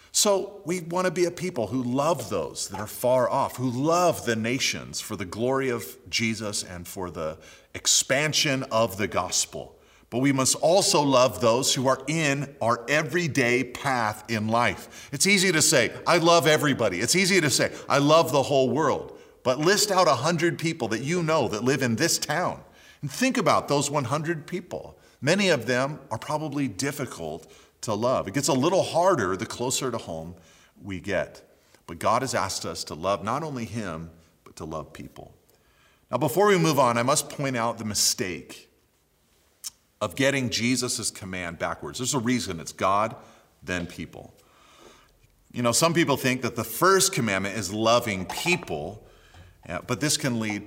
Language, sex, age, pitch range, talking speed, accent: English, male, 40-59, 105-155 Hz, 180 wpm, American